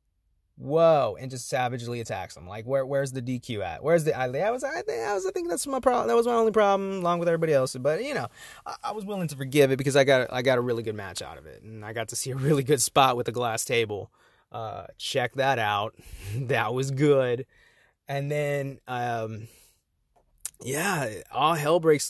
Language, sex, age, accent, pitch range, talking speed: English, male, 20-39, American, 115-155 Hz, 215 wpm